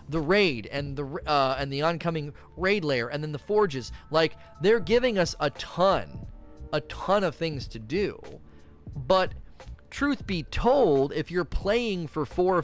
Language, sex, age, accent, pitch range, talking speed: English, male, 30-49, American, 140-180 Hz, 170 wpm